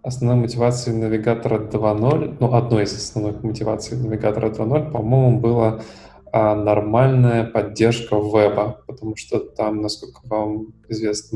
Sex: male